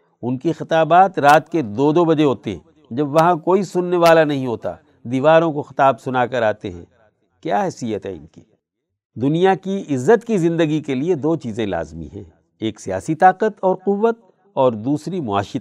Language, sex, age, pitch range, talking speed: Urdu, male, 60-79, 115-160 Hz, 185 wpm